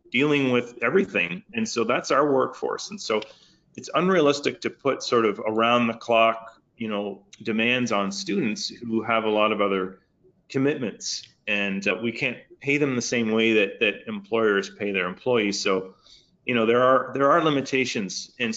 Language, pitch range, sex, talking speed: English, 110-130 Hz, male, 180 wpm